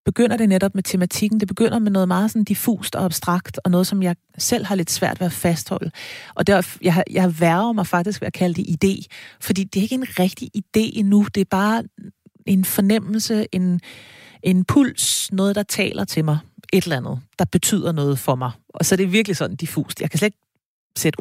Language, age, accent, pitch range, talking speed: Danish, 40-59, native, 175-210 Hz, 225 wpm